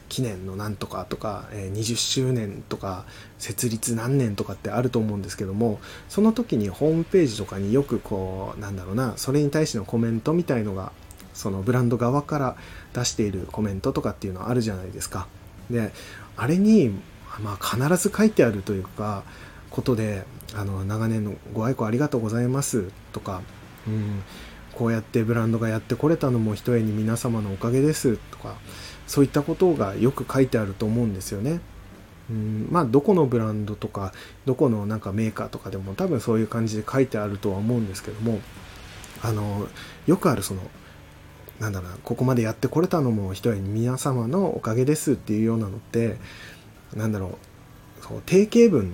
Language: Japanese